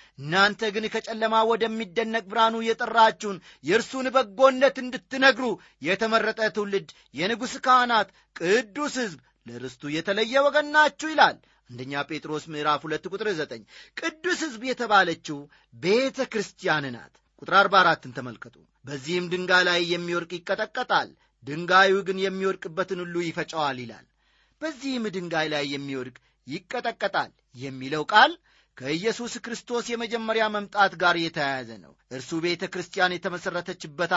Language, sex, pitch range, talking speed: Amharic, male, 155-235 Hz, 95 wpm